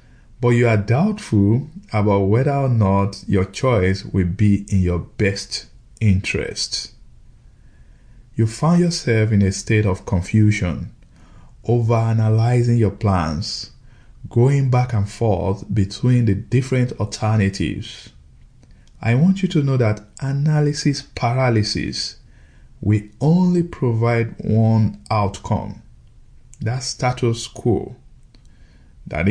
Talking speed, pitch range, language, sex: 105 wpm, 95-120 Hz, English, male